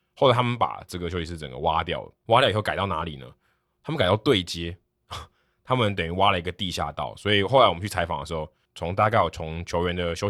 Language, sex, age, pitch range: Chinese, male, 20-39, 80-100 Hz